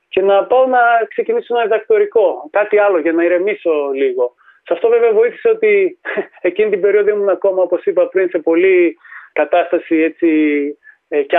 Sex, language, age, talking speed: male, Greek, 30-49, 165 wpm